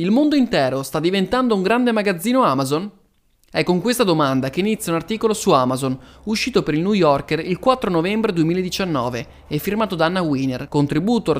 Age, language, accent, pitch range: 20-39, Italian, native, 140-205 Hz